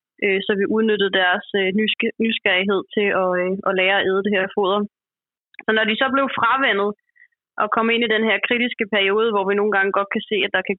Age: 20-39